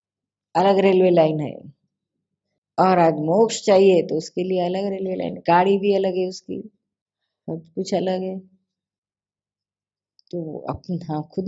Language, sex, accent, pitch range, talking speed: Hindi, female, native, 160-215 Hz, 130 wpm